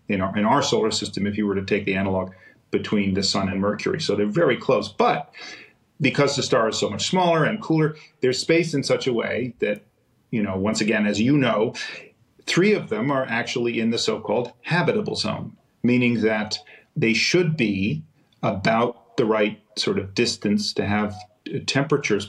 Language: English